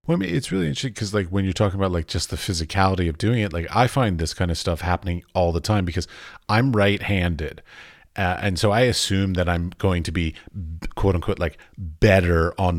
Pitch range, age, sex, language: 80-105 Hz, 30-49, male, English